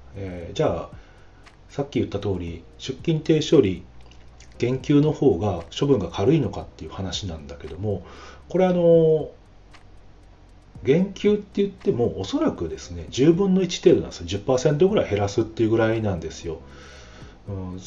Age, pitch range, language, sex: 40-59, 80-110 Hz, Japanese, male